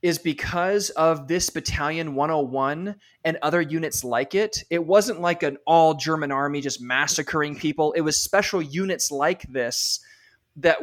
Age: 20-39